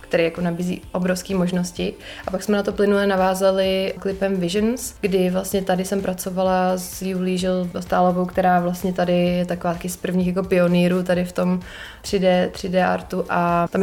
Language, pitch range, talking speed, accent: Czech, 180-195 Hz, 170 wpm, native